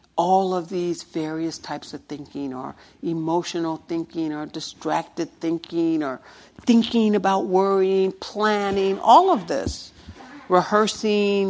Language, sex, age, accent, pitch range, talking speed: English, female, 60-79, American, 180-265 Hz, 115 wpm